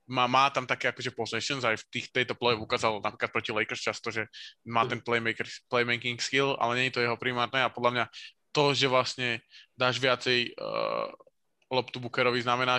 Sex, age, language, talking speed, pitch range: male, 20-39, Slovak, 185 wpm, 115-130 Hz